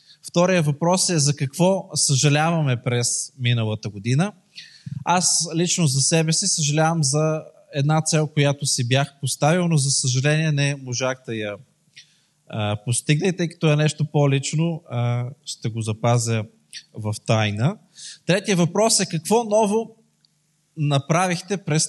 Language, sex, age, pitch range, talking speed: Bulgarian, male, 20-39, 130-170 Hz, 130 wpm